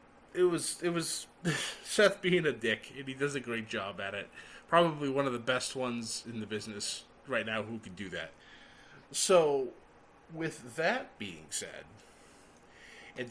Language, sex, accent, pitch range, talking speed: English, male, American, 115-170 Hz, 165 wpm